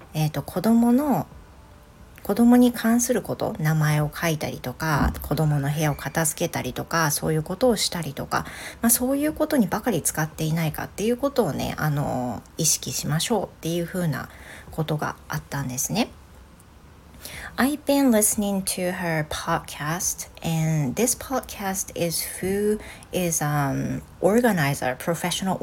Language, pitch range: Japanese, 140-195 Hz